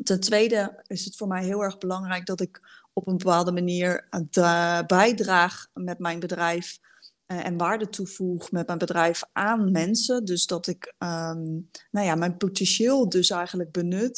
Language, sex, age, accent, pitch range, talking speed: Dutch, female, 20-39, Dutch, 170-195 Hz, 150 wpm